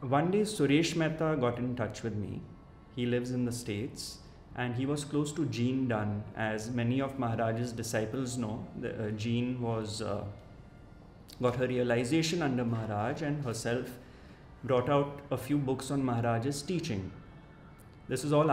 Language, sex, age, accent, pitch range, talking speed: English, male, 30-49, Indian, 115-150 Hz, 160 wpm